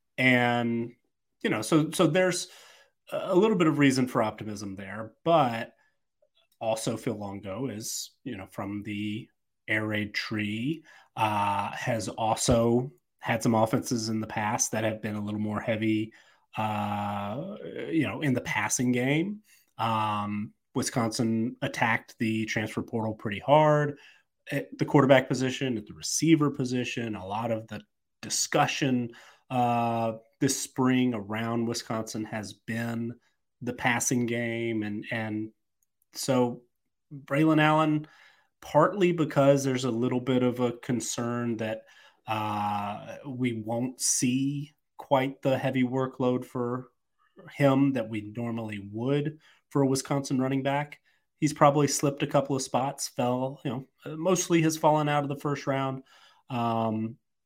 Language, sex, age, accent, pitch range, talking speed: English, male, 30-49, American, 110-140 Hz, 140 wpm